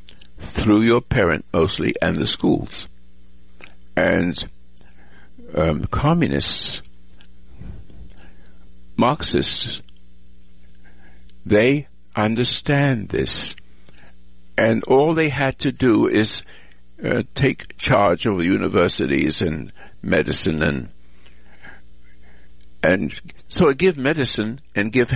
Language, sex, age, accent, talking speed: English, male, 60-79, American, 90 wpm